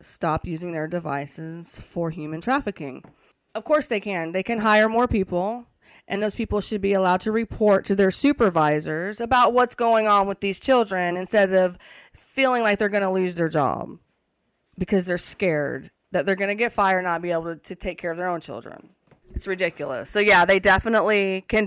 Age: 20-39